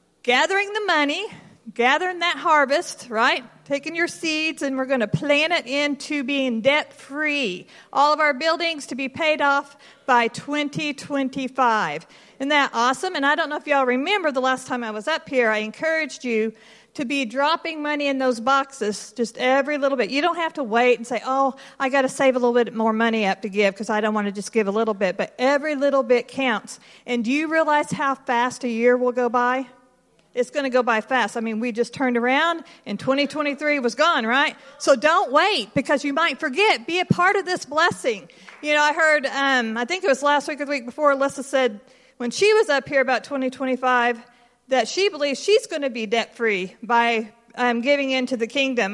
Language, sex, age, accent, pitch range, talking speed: English, female, 50-69, American, 240-295 Hz, 215 wpm